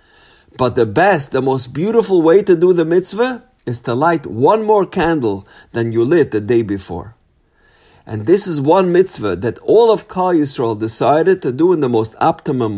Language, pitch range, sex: English, 115-170 Hz, male